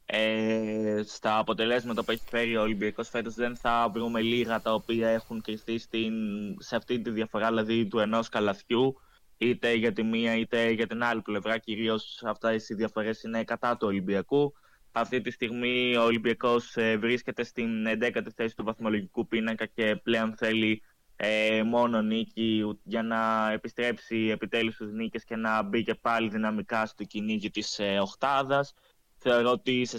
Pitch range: 110-120 Hz